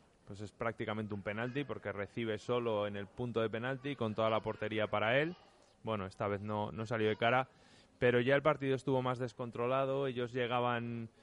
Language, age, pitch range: Spanish, 20-39, 110-130 Hz